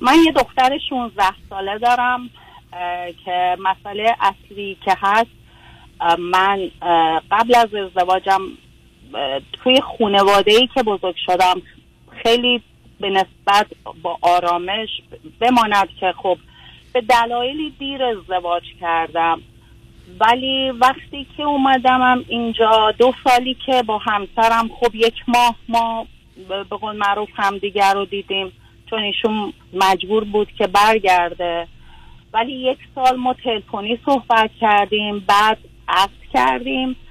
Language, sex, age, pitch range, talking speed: Persian, female, 30-49, 185-240 Hz, 115 wpm